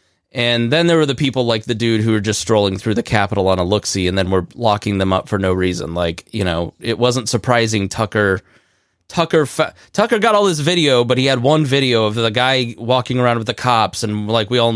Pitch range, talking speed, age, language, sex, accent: 110-140 Hz, 235 wpm, 20-39, English, male, American